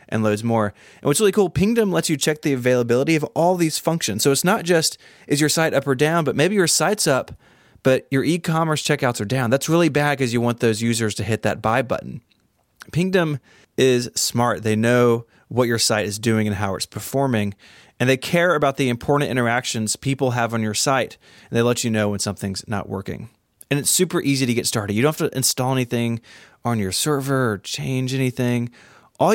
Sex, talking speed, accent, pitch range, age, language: male, 220 wpm, American, 110-150 Hz, 20-39, English